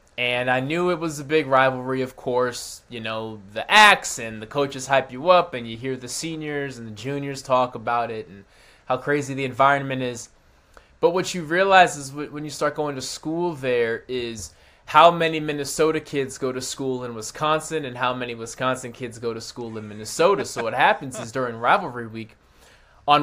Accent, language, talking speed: American, English, 200 wpm